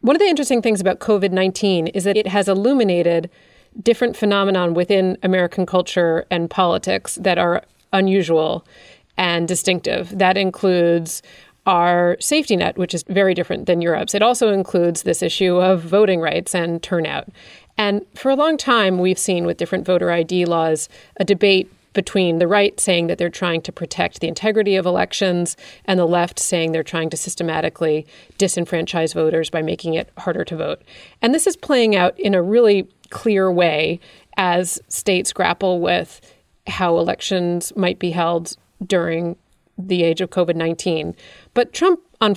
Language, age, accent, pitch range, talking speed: English, 30-49, American, 170-200 Hz, 165 wpm